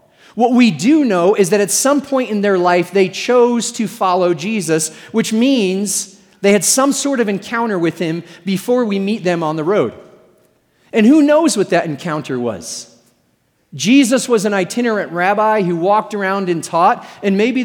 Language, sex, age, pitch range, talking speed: English, male, 40-59, 175-225 Hz, 180 wpm